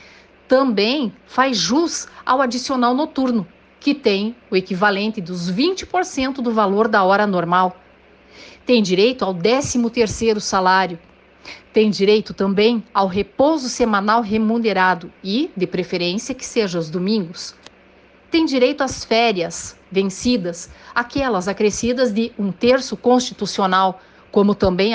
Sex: female